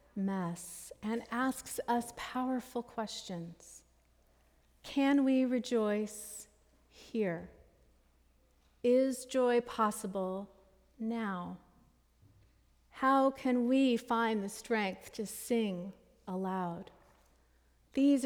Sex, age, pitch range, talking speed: female, 40-59, 195-255 Hz, 80 wpm